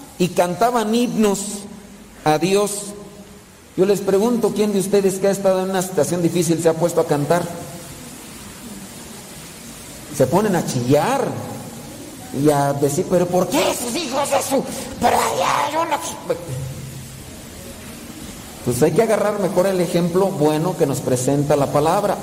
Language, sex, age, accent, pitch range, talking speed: Spanish, male, 50-69, Mexican, 155-225 Hz, 135 wpm